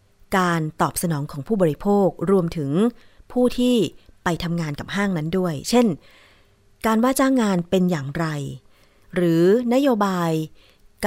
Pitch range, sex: 155-205 Hz, female